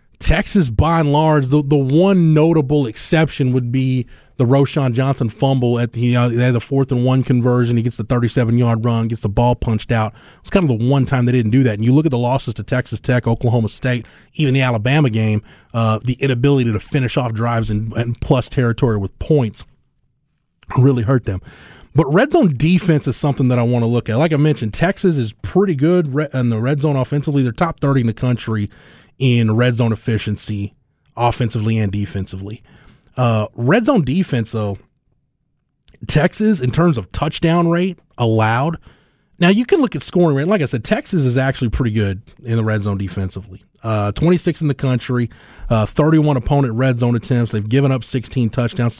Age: 30-49